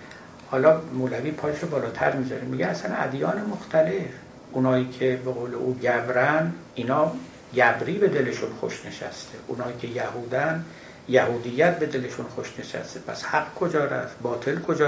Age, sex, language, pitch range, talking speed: 60-79, male, Persian, 125-155 Hz, 135 wpm